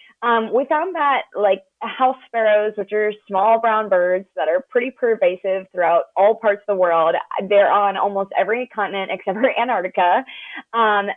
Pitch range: 185-235 Hz